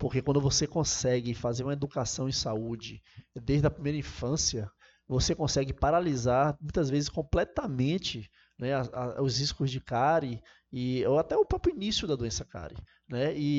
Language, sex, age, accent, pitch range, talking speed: Portuguese, male, 20-39, Brazilian, 125-155 Hz, 165 wpm